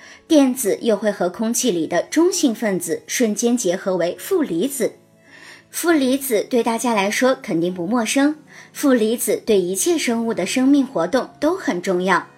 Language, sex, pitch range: Chinese, male, 205-290 Hz